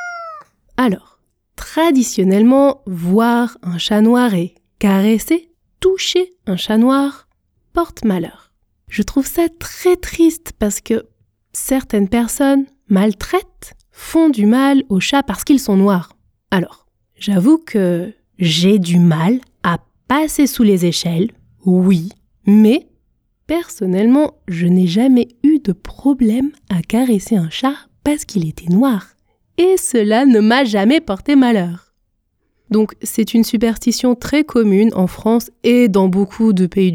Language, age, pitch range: French, 20-39, 190-280 Hz